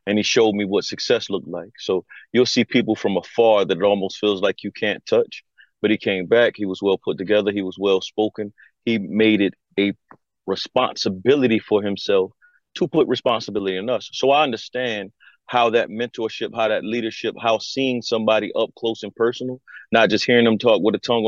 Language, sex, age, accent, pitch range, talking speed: English, male, 30-49, American, 100-115 Hz, 200 wpm